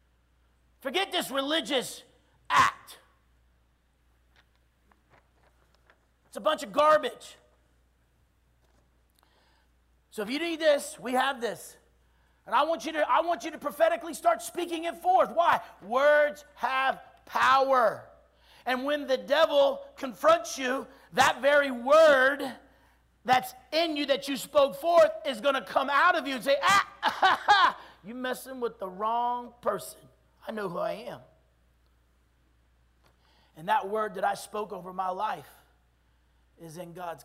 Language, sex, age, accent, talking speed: English, male, 40-59, American, 130 wpm